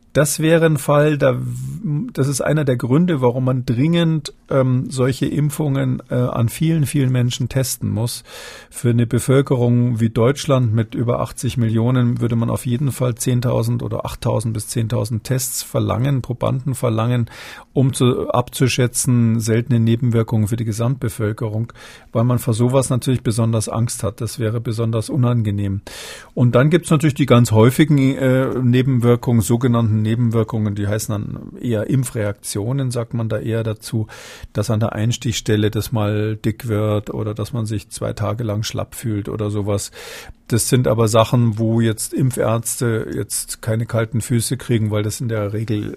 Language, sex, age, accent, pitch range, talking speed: German, male, 40-59, German, 115-135 Hz, 160 wpm